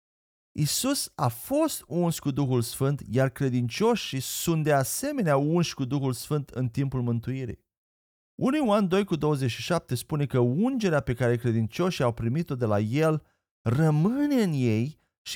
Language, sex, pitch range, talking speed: Romanian, male, 120-180 Hz, 150 wpm